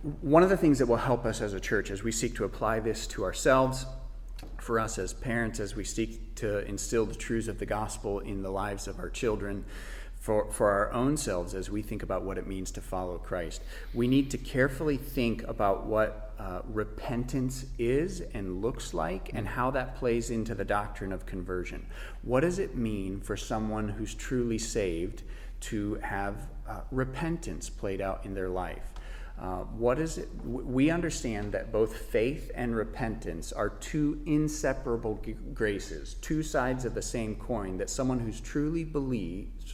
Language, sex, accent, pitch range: English, male, American, 100-130 Hz